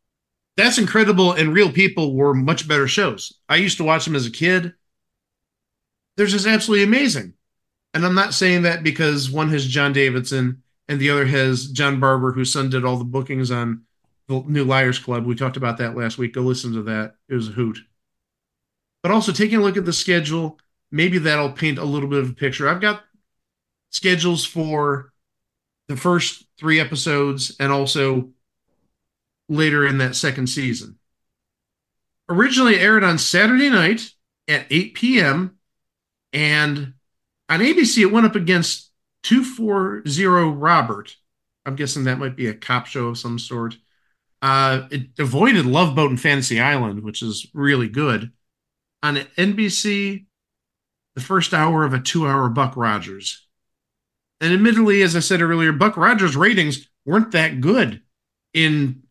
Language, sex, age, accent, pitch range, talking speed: English, male, 40-59, American, 130-180 Hz, 160 wpm